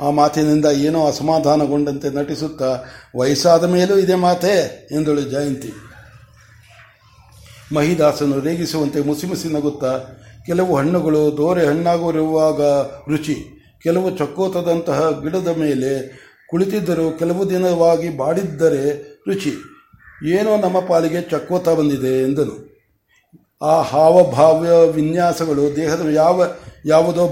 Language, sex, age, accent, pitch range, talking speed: Kannada, male, 60-79, native, 145-170 Hz, 90 wpm